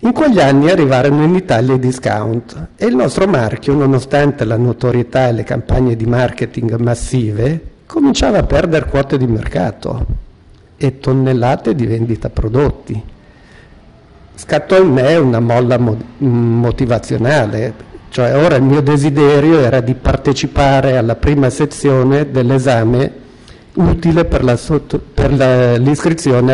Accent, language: native, Italian